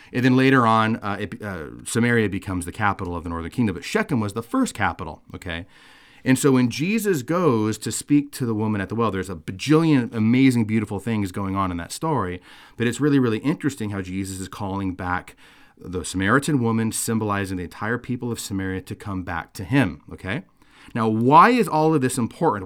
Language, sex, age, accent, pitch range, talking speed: English, male, 30-49, American, 100-135 Hz, 205 wpm